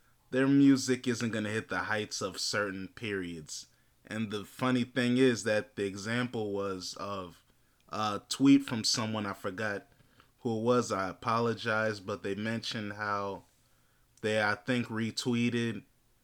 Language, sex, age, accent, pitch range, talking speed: English, male, 20-39, American, 105-120 Hz, 150 wpm